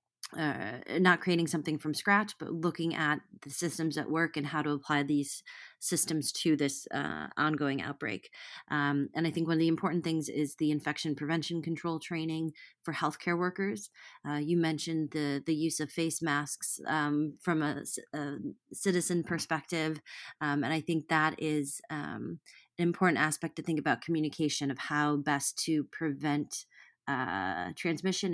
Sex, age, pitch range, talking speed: female, 30-49, 145-165 Hz, 165 wpm